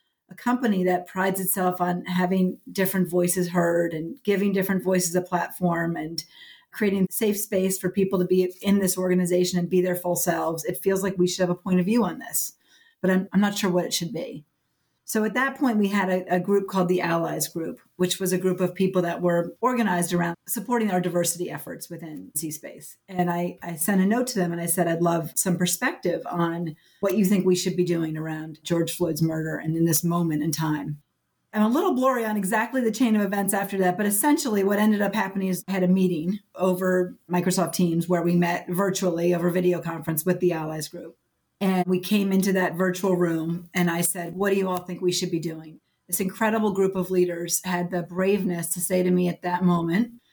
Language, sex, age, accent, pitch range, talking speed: English, female, 40-59, American, 175-190 Hz, 220 wpm